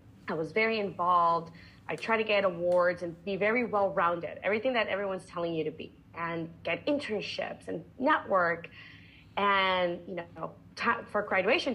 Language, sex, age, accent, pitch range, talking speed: English, female, 30-49, American, 165-220 Hz, 155 wpm